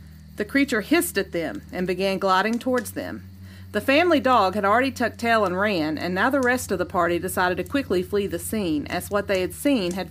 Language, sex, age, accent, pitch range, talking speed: English, female, 40-59, American, 175-255 Hz, 225 wpm